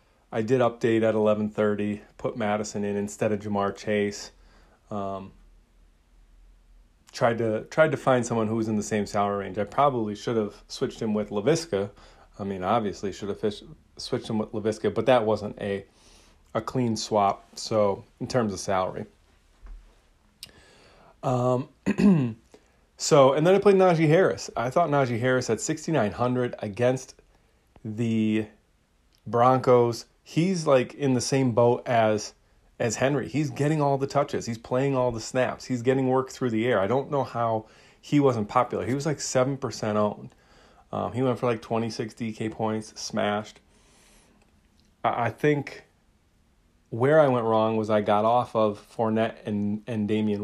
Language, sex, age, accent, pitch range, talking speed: English, male, 30-49, American, 105-125 Hz, 160 wpm